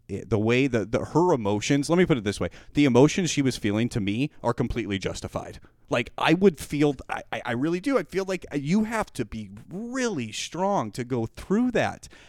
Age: 30-49